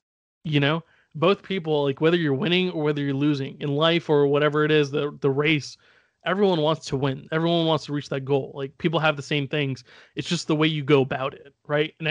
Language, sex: English, male